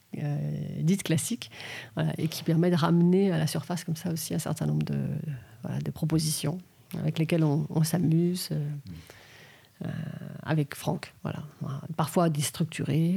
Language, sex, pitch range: French, female, 150-180 Hz